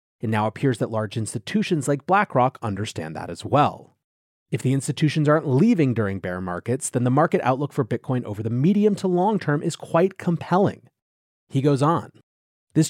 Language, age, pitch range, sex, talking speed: English, 30-49, 115-165 Hz, male, 180 wpm